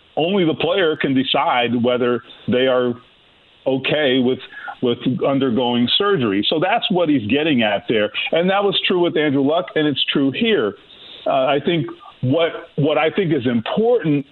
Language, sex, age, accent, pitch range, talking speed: English, male, 40-59, American, 125-190 Hz, 170 wpm